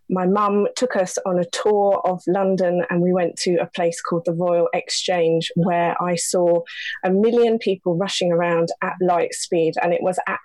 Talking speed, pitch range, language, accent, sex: 195 wpm, 175-205 Hz, English, British, female